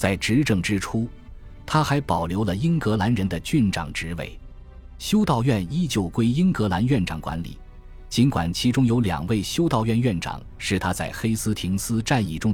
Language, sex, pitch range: Chinese, male, 80-115 Hz